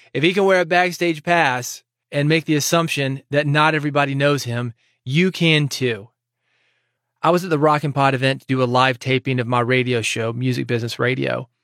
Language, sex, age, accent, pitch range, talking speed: English, male, 30-49, American, 120-150 Hz, 200 wpm